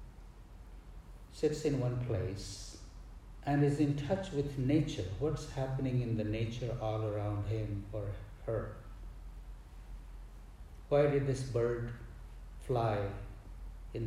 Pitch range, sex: 80-130 Hz, male